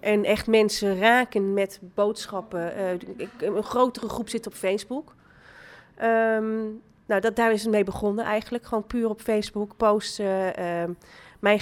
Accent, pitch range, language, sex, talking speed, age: Dutch, 195-235 Hz, Dutch, female, 155 wpm, 30-49